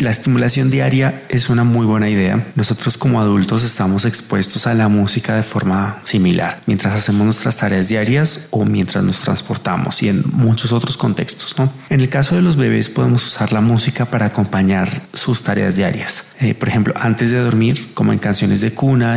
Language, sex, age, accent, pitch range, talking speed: Spanish, male, 30-49, Colombian, 100-120 Hz, 190 wpm